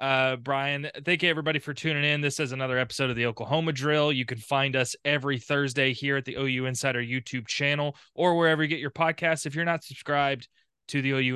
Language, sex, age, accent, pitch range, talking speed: English, male, 20-39, American, 125-145 Hz, 220 wpm